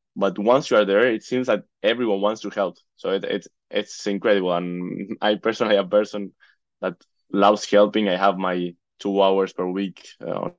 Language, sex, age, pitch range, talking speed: English, male, 20-39, 90-105 Hz, 195 wpm